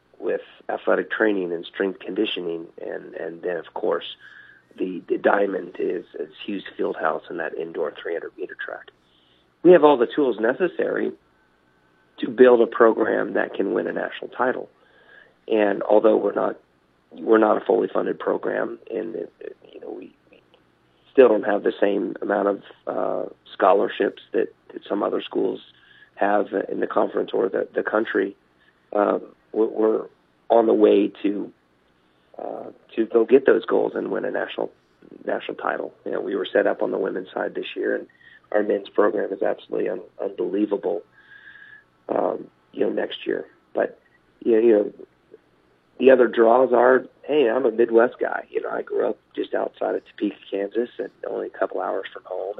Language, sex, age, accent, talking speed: English, male, 40-59, American, 175 wpm